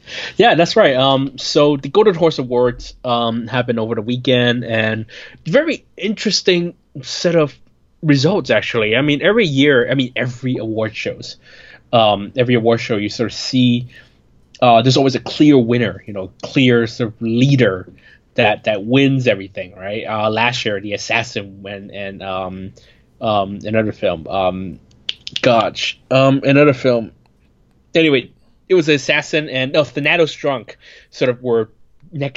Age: 20-39